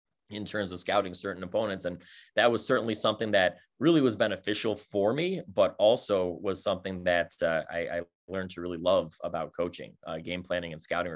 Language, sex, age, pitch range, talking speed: English, male, 30-49, 95-115 Hz, 195 wpm